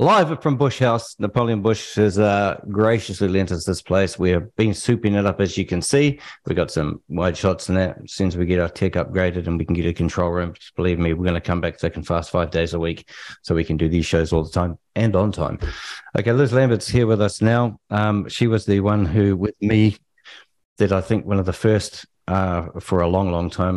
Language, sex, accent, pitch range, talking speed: English, male, Australian, 85-100 Hz, 250 wpm